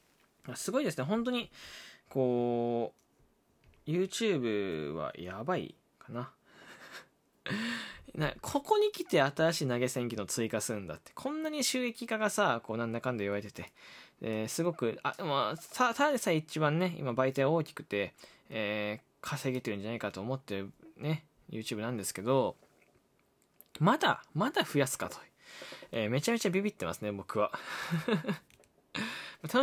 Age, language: 20-39, Japanese